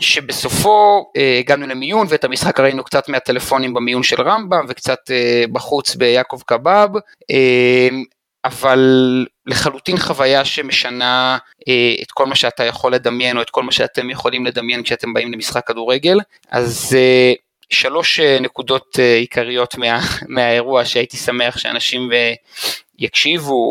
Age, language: 30-49, Hebrew